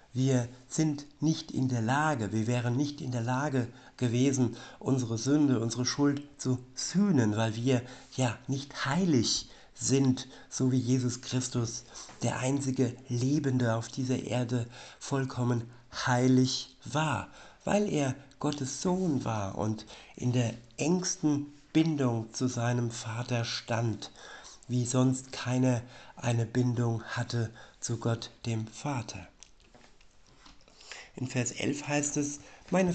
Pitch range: 115-140 Hz